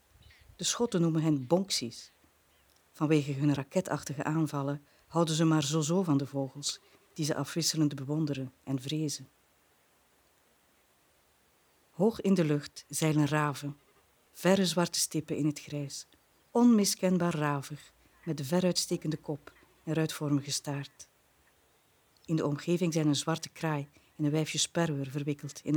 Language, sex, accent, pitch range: Dutch, female, Dutch, 140-165 Hz